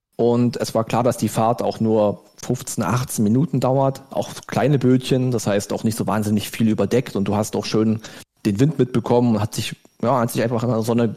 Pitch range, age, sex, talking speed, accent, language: 110-135 Hz, 40-59, male, 225 wpm, German, German